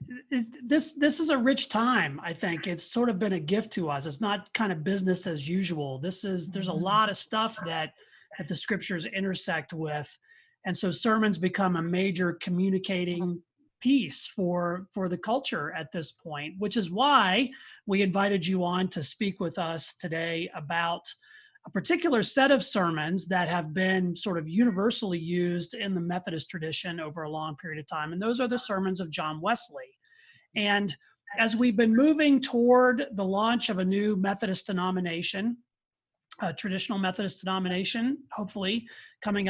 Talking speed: 170 wpm